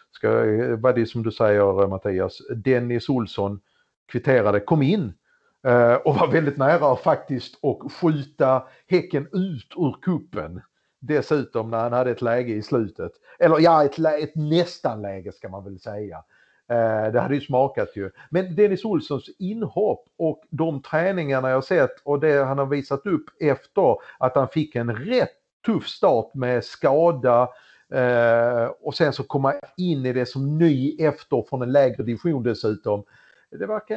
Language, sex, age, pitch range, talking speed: Swedish, male, 50-69, 120-170 Hz, 165 wpm